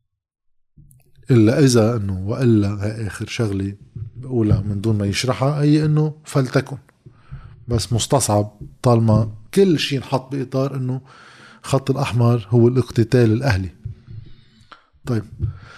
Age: 20-39